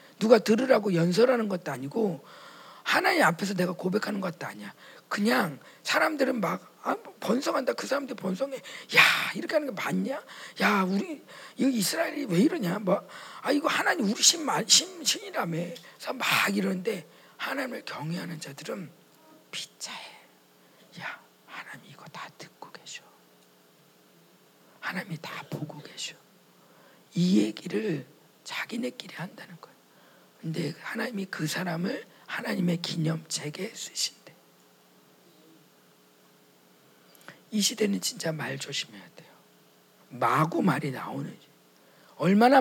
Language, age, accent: Korean, 40-59, native